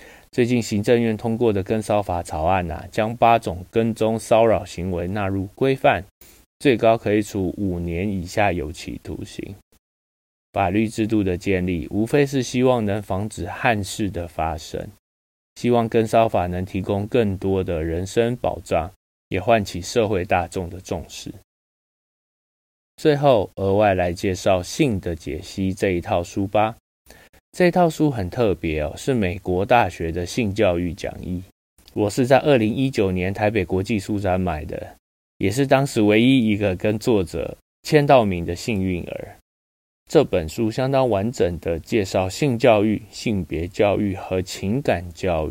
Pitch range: 90-115 Hz